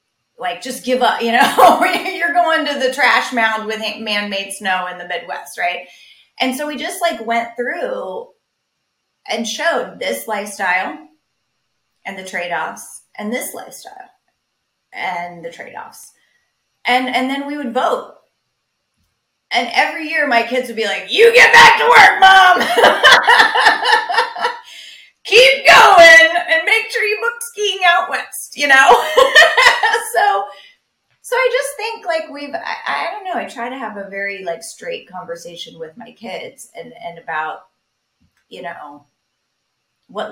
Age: 30-49